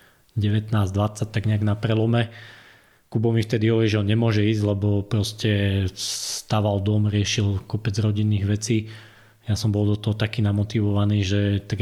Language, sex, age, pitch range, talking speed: Slovak, male, 20-39, 105-115 Hz, 155 wpm